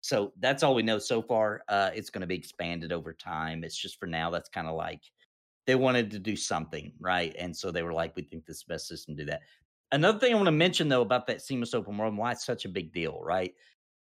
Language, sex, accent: English, male, American